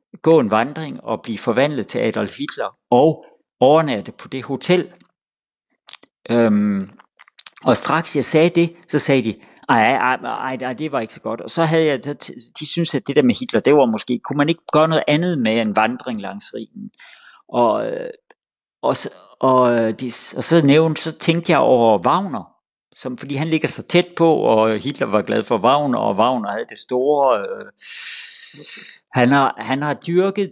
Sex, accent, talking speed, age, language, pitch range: male, native, 180 wpm, 50-69, Danish, 130-195 Hz